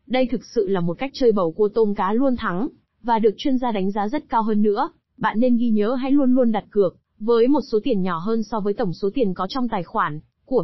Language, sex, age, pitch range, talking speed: Vietnamese, female, 20-39, 200-250 Hz, 270 wpm